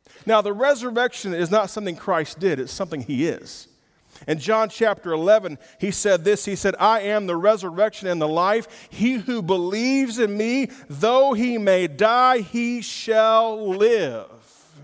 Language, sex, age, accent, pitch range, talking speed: English, male, 40-59, American, 170-230 Hz, 160 wpm